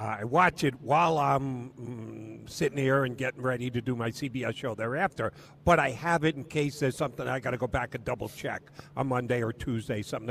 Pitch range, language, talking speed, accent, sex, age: 115-145 Hz, English, 220 wpm, American, male, 50-69